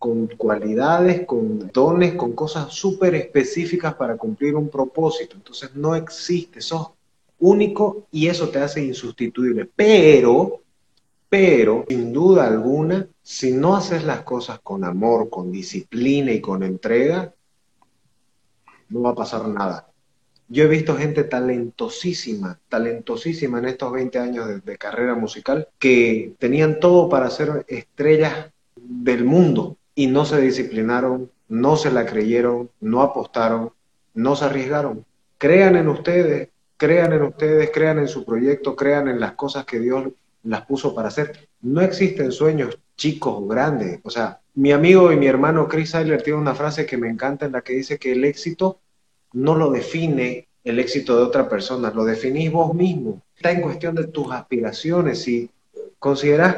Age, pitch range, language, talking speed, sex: 30-49, 125-160 Hz, Spanish, 155 wpm, male